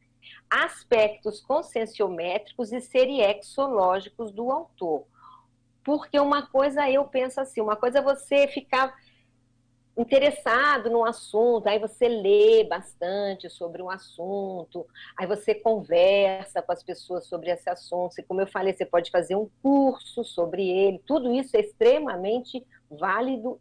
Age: 50-69